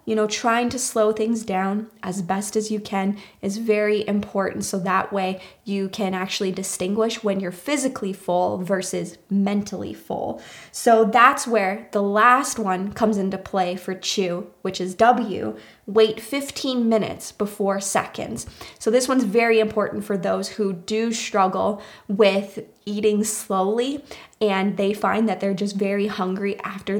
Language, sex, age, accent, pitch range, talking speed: English, female, 20-39, American, 190-220 Hz, 155 wpm